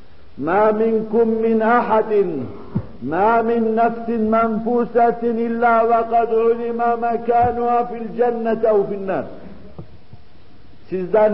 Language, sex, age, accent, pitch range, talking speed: Turkish, male, 50-69, native, 195-235 Hz, 85 wpm